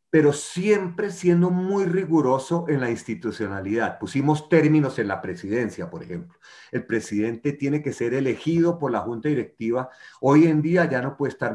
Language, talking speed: Spanish, 165 wpm